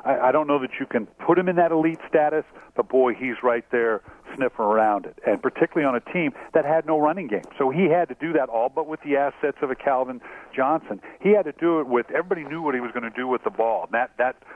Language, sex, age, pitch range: English, male, 50-69, 120-150 Hz